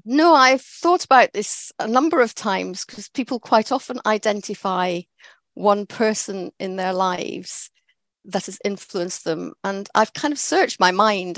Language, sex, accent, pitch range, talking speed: English, female, British, 185-220 Hz, 160 wpm